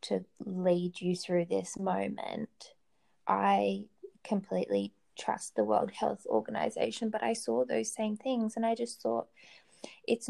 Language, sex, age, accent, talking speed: English, female, 20-39, Australian, 140 wpm